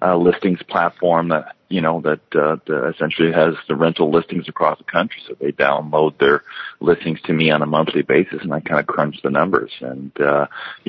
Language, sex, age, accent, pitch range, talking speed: English, male, 40-59, American, 75-85 Hz, 210 wpm